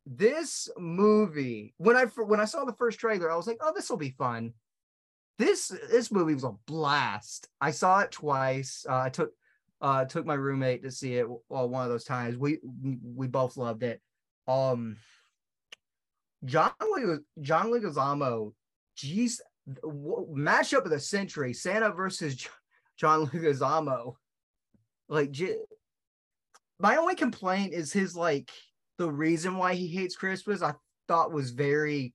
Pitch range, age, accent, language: 130-185 Hz, 20-39, American, English